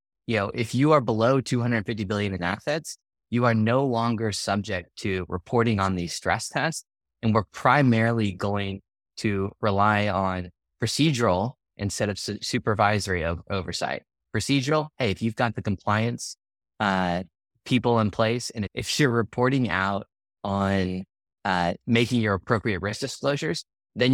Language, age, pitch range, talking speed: English, 20-39, 95-115 Hz, 140 wpm